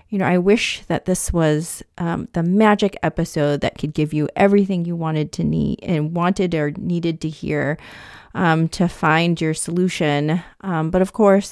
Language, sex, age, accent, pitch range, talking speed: English, female, 30-49, American, 170-200 Hz, 180 wpm